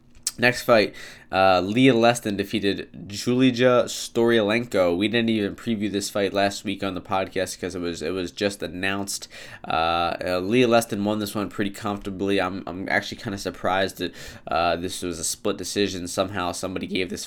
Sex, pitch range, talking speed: male, 90-105 Hz, 180 wpm